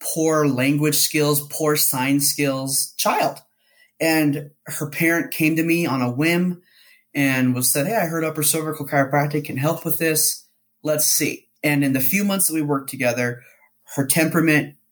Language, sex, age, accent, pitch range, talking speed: English, male, 20-39, American, 130-160 Hz, 170 wpm